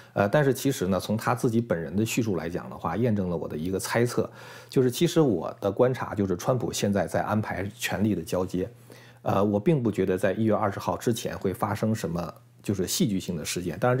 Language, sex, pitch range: Chinese, male, 95-120 Hz